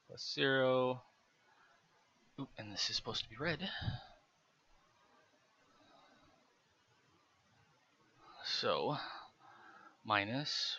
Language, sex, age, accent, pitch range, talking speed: English, male, 20-39, American, 105-125 Hz, 60 wpm